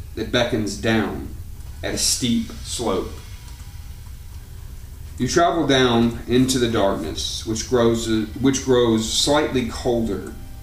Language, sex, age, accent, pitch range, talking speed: English, male, 30-49, American, 95-120 Hz, 100 wpm